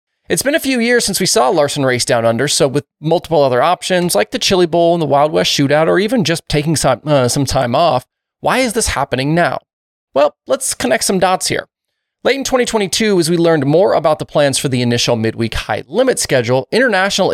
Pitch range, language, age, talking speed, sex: 135-195 Hz, English, 30-49, 220 wpm, male